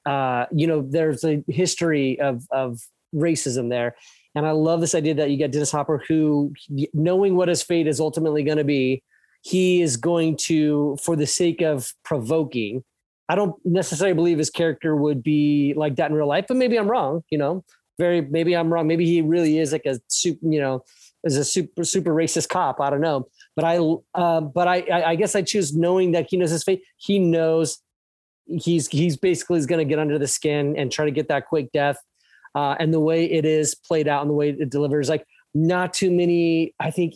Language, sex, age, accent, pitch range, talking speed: English, male, 30-49, American, 145-170 Hz, 215 wpm